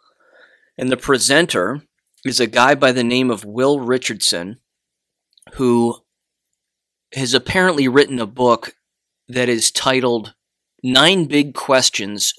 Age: 30-49